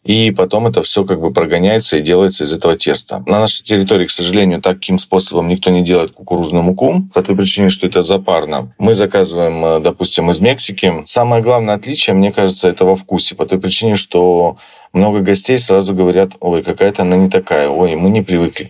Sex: male